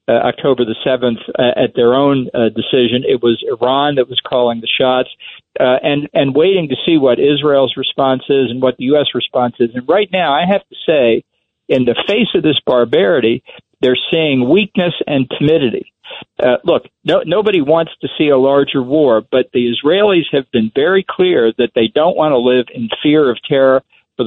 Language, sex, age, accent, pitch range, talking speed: English, male, 50-69, American, 120-150 Hz, 195 wpm